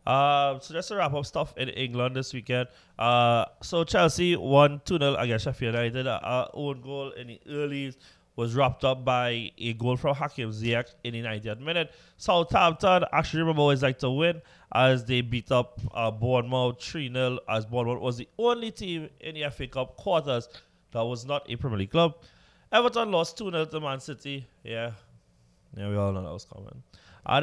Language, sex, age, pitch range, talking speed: English, male, 20-39, 115-145 Hz, 185 wpm